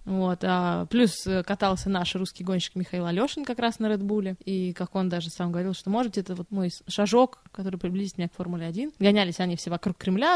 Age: 20-39